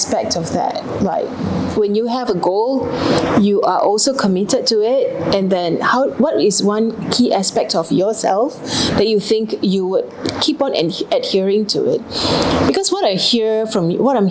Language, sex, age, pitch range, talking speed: English, female, 30-49, 195-235 Hz, 180 wpm